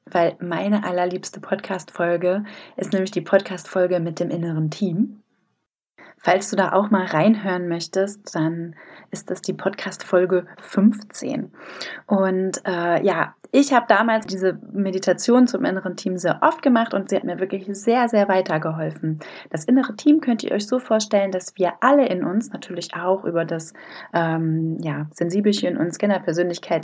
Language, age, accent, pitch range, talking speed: German, 30-49, German, 175-220 Hz, 150 wpm